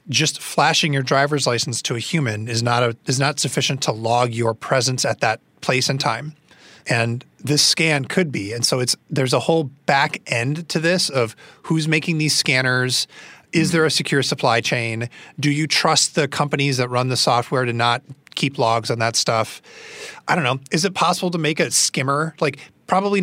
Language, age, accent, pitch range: English, 30-49, American, 125-160 Hz